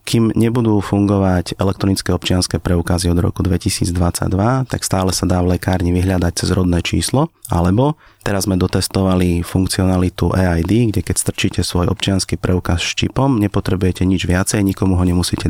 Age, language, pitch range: 30-49, Slovak, 90-105 Hz